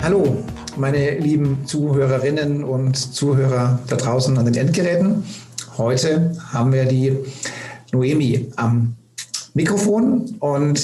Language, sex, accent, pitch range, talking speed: German, male, German, 130-150 Hz, 105 wpm